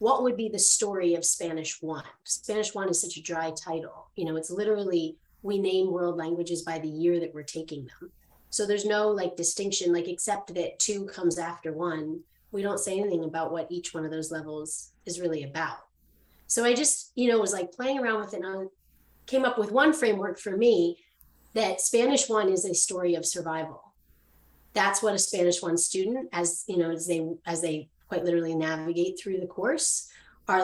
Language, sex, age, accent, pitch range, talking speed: English, female, 30-49, American, 160-200 Hz, 205 wpm